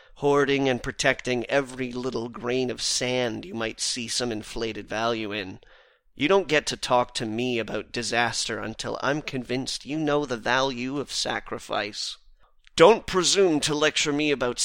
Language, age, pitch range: English, 30-49, 115-140 Hz